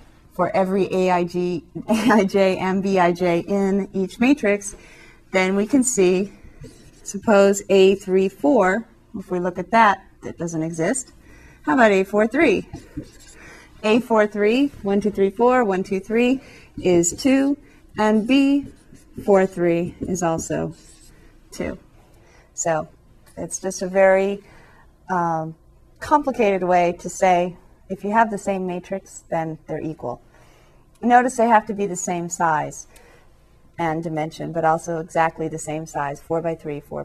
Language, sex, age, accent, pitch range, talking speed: English, female, 30-49, American, 170-215 Hz, 130 wpm